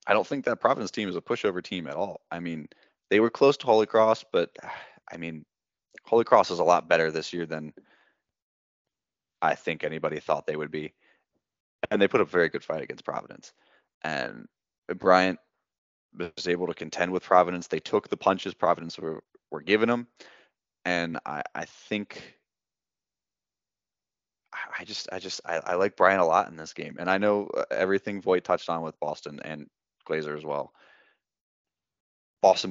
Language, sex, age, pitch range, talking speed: English, male, 20-39, 80-95 Hz, 180 wpm